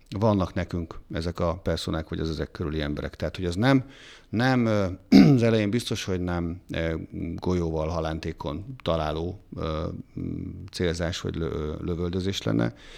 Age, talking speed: 50-69, 125 wpm